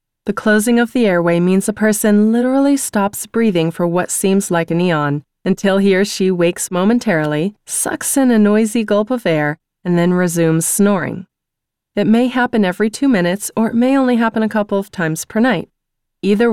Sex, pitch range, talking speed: female, 175-225 Hz, 190 wpm